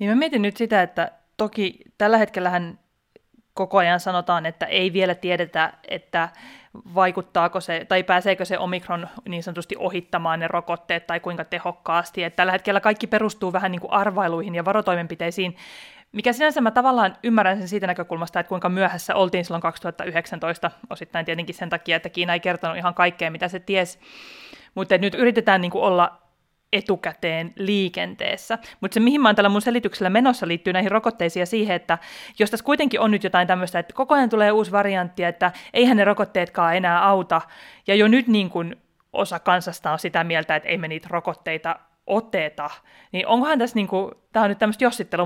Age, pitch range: 30-49, 175-210 Hz